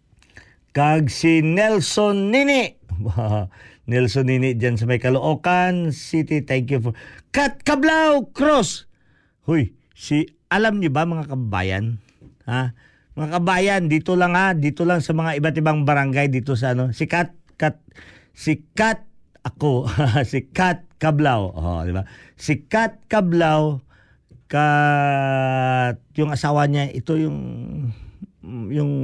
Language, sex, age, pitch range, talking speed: Filipino, male, 50-69, 125-170 Hz, 130 wpm